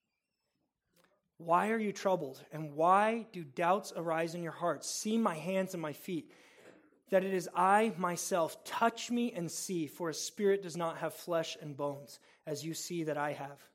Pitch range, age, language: 160-200 Hz, 20-39, English